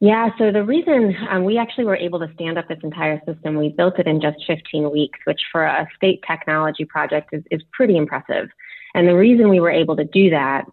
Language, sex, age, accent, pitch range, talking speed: English, female, 30-49, American, 155-180 Hz, 230 wpm